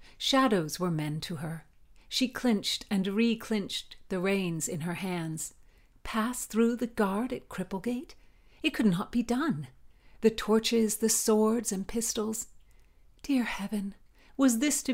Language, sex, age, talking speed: English, female, 40-59, 145 wpm